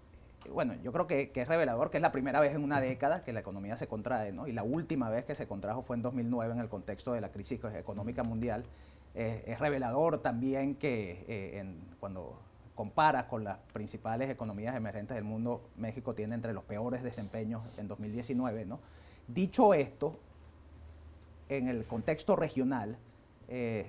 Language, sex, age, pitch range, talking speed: Spanish, male, 30-49, 105-130 Hz, 180 wpm